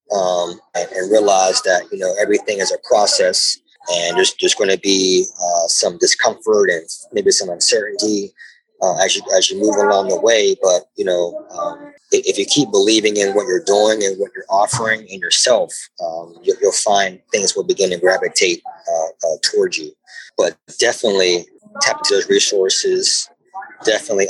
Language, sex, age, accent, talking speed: English, male, 30-49, American, 175 wpm